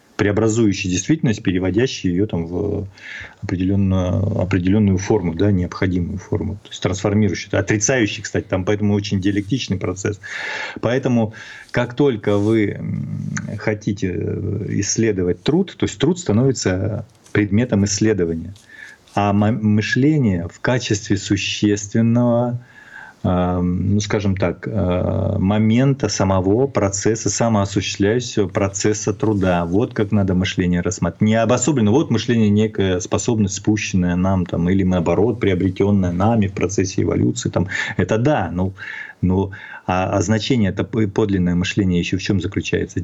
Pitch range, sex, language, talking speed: 95-110 Hz, male, Russian, 120 wpm